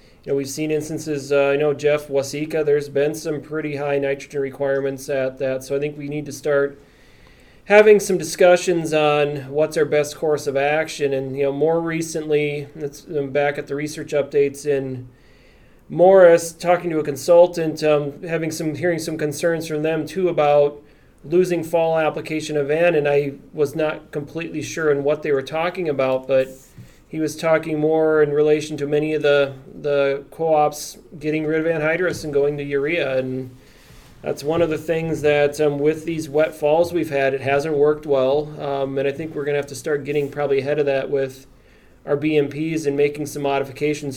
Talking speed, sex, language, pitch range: 190 wpm, male, English, 140-160 Hz